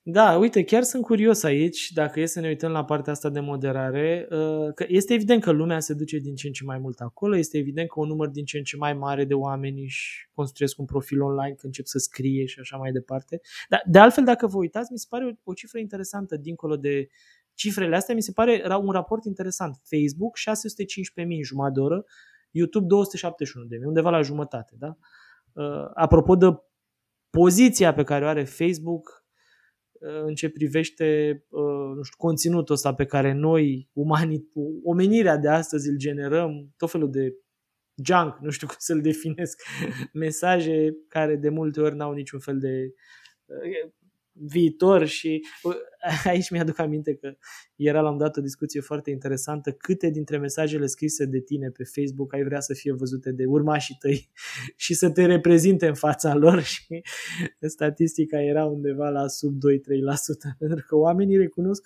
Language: Romanian